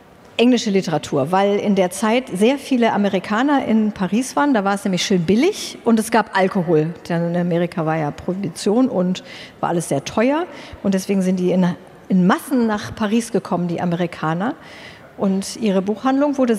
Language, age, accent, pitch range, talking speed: German, 50-69, German, 195-235 Hz, 175 wpm